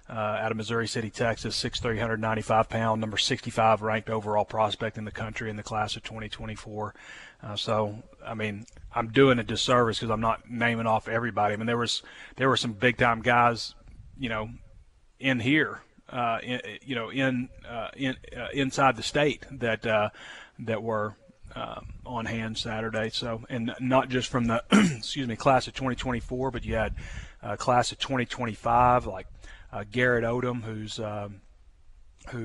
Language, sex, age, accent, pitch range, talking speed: English, male, 30-49, American, 110-125 Hz, 180 wpm